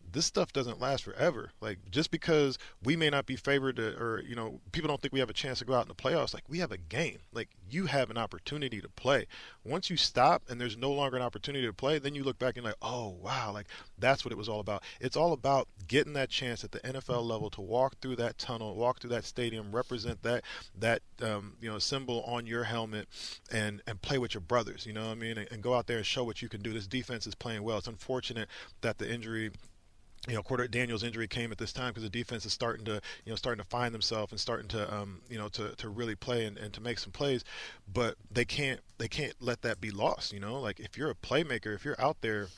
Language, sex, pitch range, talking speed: English, male, 105-125 Hz, 260 wpm